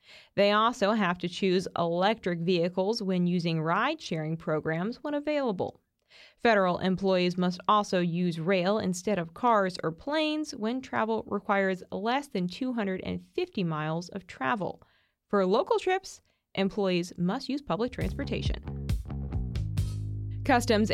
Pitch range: 180-225 Hz